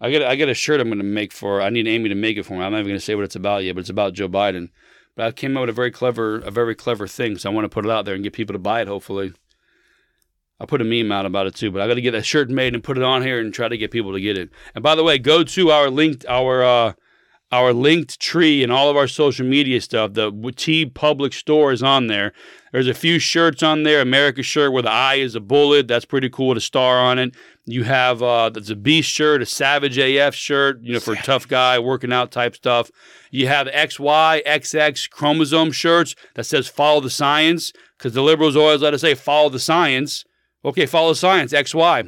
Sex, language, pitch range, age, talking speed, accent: male, English, 120-150 Hz, 40-59, 260 wpm, American